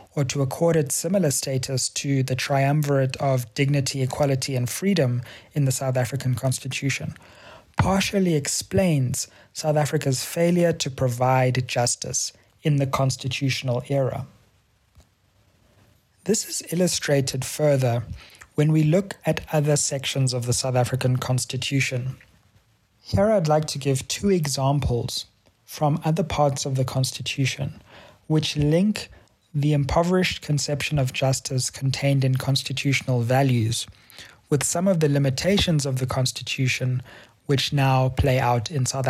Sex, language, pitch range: male, English, 125-150 Hz